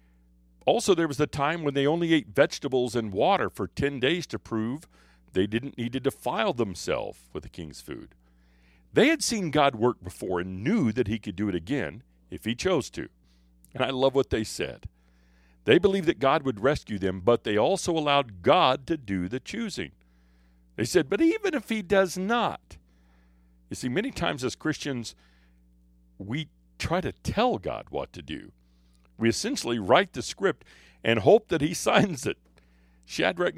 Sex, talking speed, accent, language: male, 180 wpm, American, English